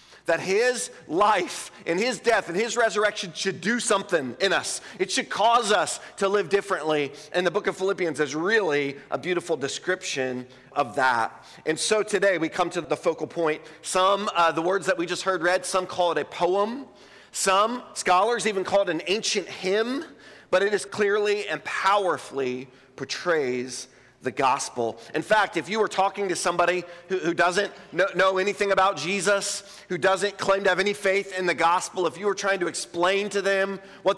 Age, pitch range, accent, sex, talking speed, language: 40-59, 160-200 Hz, American, male, 190 wpm, English